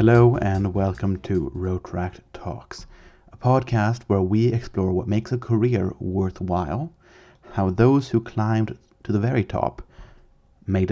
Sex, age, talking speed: male, 30-49, 135 wpm